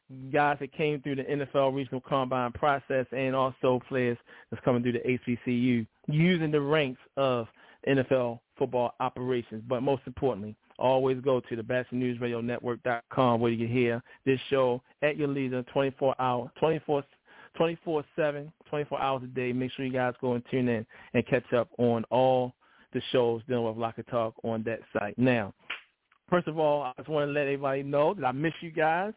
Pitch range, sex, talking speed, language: 125-145 Hz, male, 190 wpm, English